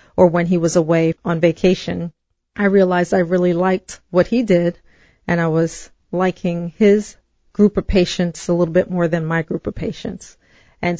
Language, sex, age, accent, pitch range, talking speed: English, female, 40-59, American, 165-185 Hz, 180 wpm